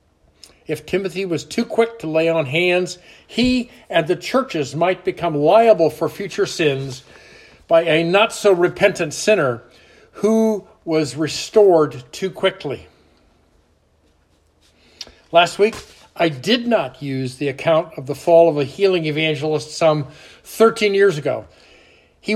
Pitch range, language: 130-195 Hz, English